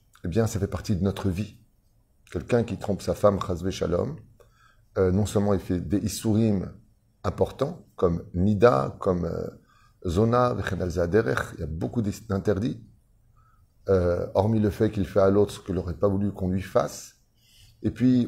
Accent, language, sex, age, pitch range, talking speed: French, French, male, 30-49, 95-115 Hz, 165 wpm